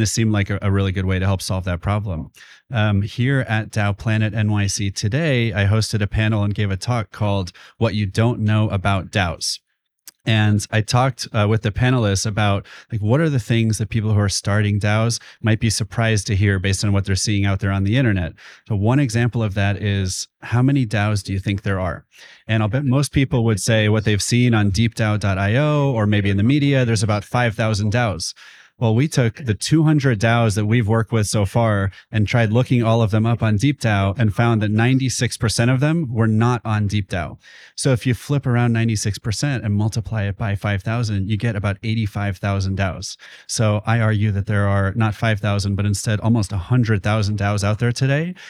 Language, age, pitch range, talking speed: English, 30-49, 100-115 Hz, 205 wpm